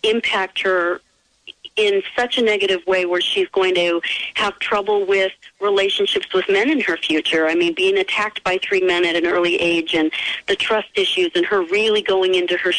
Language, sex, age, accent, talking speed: English, female, 40-59, American, 190 wpm